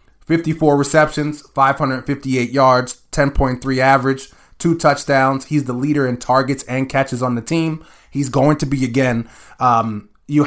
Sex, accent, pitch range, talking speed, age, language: male, American, 120-150 Hz, 145 wpm, 30-49, English